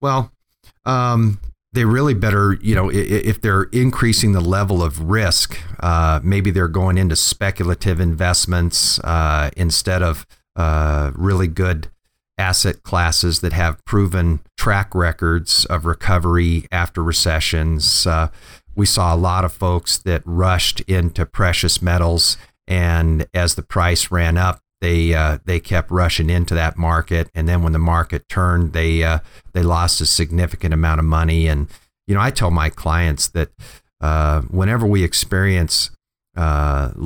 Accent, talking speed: American, 150 wpm